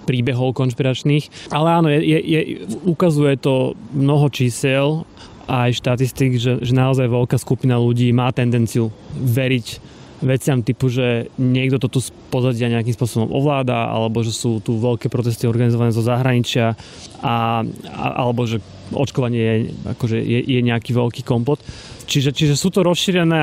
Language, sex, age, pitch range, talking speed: Slovak, male, 30-49, 125-145 Hz, 145 wpm